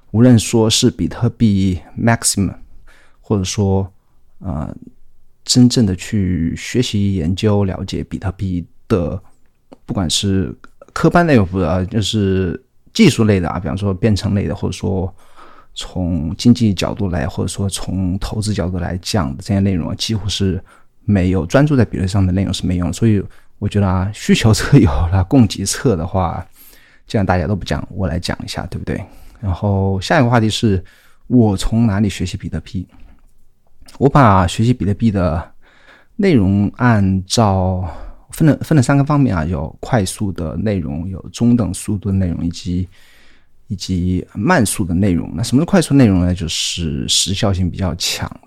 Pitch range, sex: 90-110 Hz, male